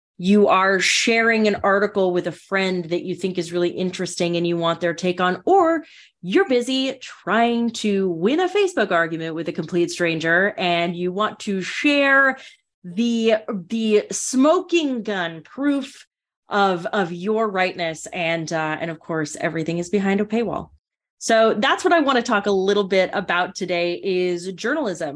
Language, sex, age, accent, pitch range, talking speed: English, female, 30-49, American, 165-210 Hz, 170 wpm